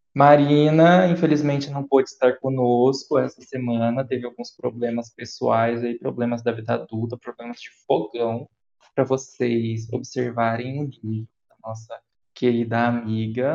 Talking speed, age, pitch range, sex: 125 wpm, 20-39, 120-145 Hz, male